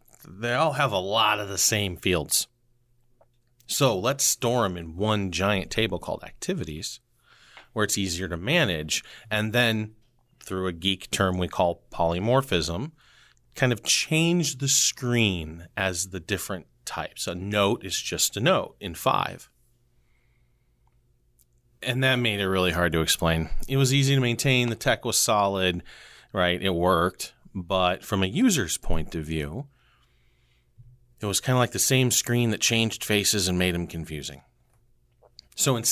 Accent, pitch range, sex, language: American, 80-110 Hz, male, English